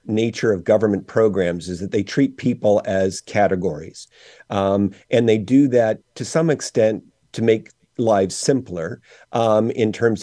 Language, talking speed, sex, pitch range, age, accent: English, 155 wpm, male, 100-120 Hz, 50-69, American